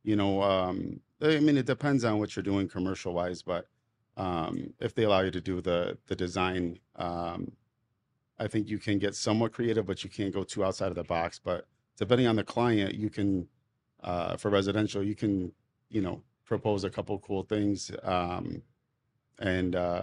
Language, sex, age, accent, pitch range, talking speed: English, male, 40-59, American, 95-115 Hz, 190 wpm